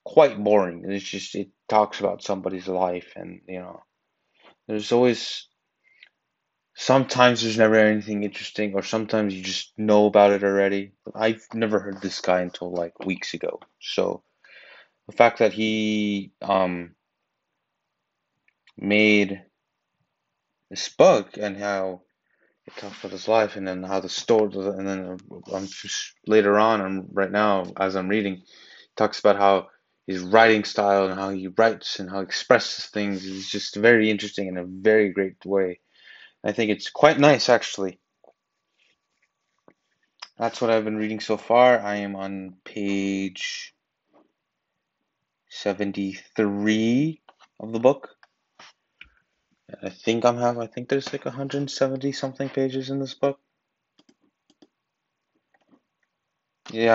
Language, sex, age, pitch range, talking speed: English, male, 20-39, 95-110 Hz, 140 wpm